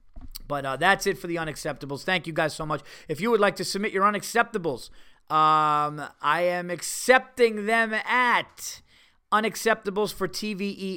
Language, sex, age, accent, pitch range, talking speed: English, male, 30-49, American, 130-175 Hz, 160 wpm